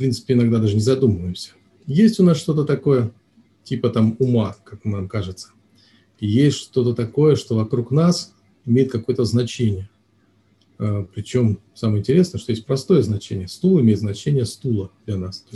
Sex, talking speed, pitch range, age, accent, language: male, 155 wpm, 105-130 Hz, 40-59, native, Russian